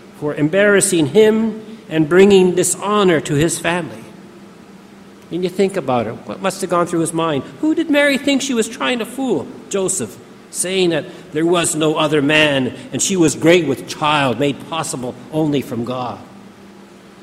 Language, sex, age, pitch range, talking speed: English, male, 50-69, 155-200 Hz, 170 wpm